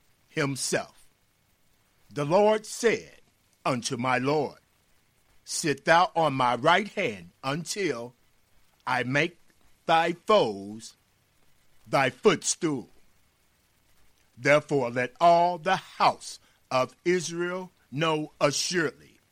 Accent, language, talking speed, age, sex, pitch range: American, English, 90 wpm, 50-69, male, 100-155 Hz